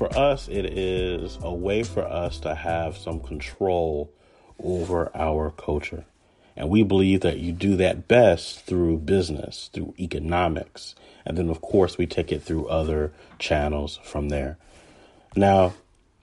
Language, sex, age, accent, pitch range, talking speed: English, male, 30-49, American, 80-100 Hz, 150 wpm